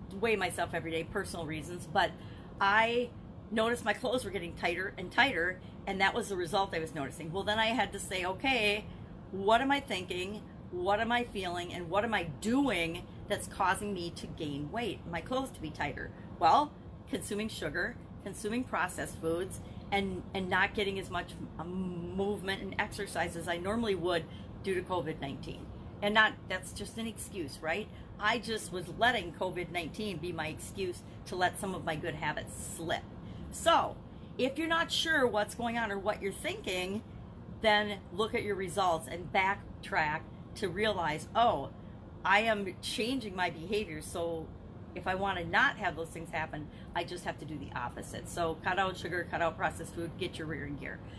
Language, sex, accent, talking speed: English, female, American, 185 wpm